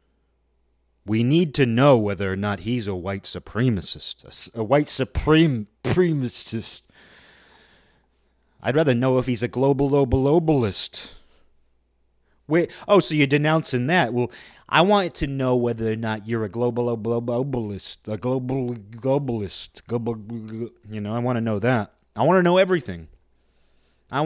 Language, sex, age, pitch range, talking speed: English, male, 30-49, 90-135 Hz, 155 wpm